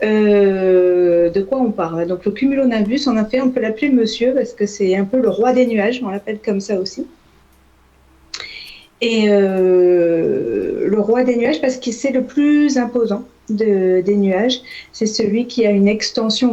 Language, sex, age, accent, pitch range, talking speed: French, female, 40-59, French, 190-235 Hz, 180 wpm